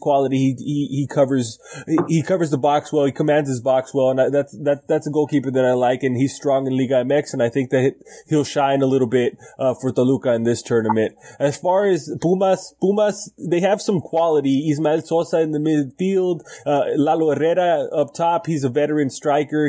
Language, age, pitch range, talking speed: English, 20-39, 135-155 Hz, 215 wpm